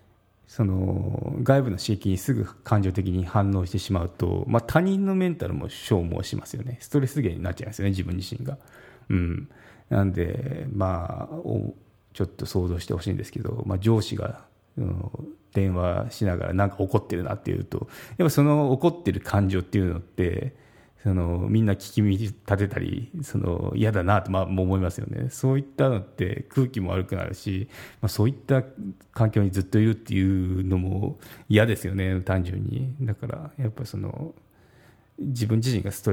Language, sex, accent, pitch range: Japanese, male, native, 95-125 Hz